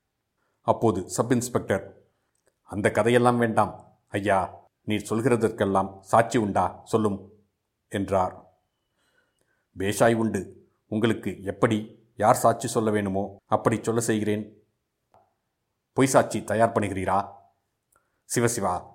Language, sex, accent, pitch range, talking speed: Tamil, male, native, 95-115 Hz, 90 wpm